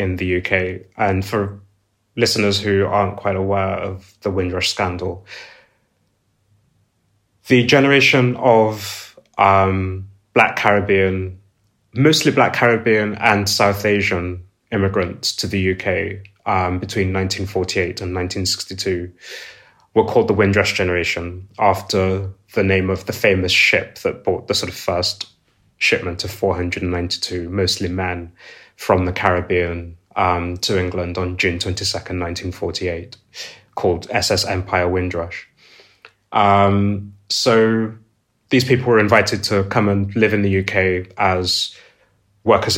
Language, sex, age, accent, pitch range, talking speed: English, male, 20-39, British, 90-100 Hz, 120 wpm